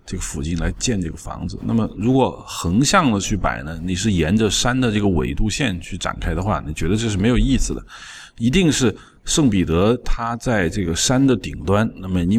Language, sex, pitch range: Chinese, male, 90-115 Hz